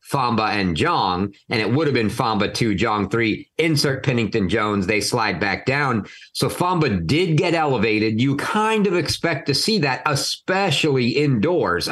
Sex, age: male, 50-69